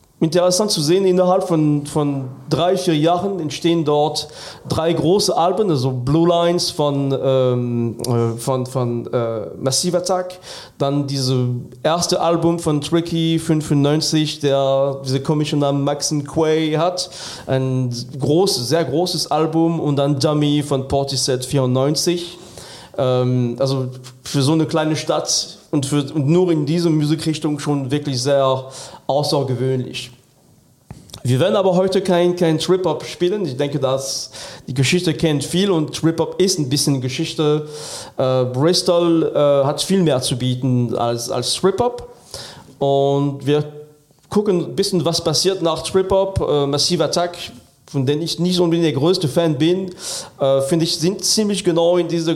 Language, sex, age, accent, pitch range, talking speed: German, male, 30-49, German, 135-175 Hz, 150 wpm